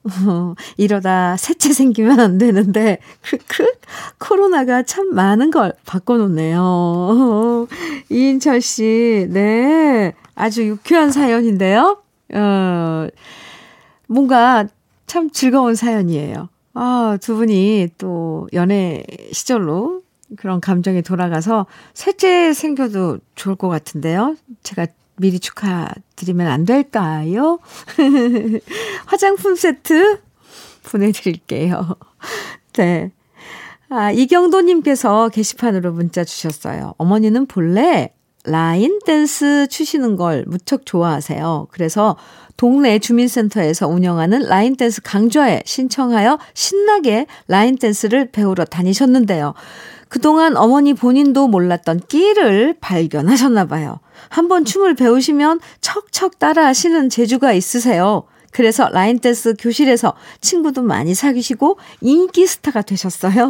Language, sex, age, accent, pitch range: Korean, female, 50-69, native, 185-280 Hz